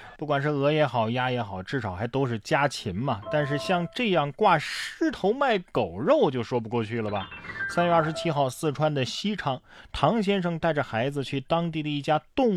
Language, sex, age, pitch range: Chinese, male, 20-39, 115-175 Hz